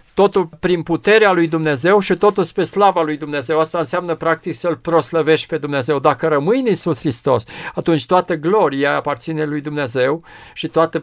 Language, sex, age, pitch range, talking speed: Romanian, male, 50-69, 150-185 Hz, 170 wpm